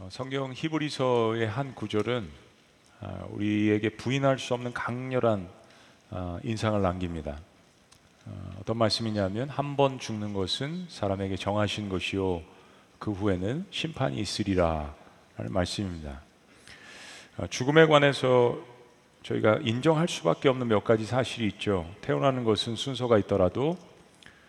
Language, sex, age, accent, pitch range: Korean, male, 40-59, native, 95-125 Hz